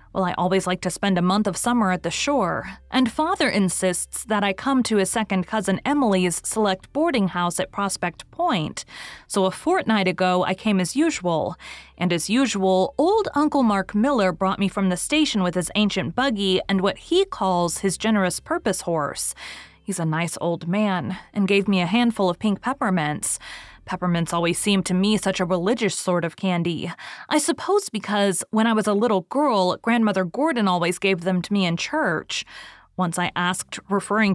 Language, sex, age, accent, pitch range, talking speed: English, female, 20-39, American, 180-225 Hz, 190 wpm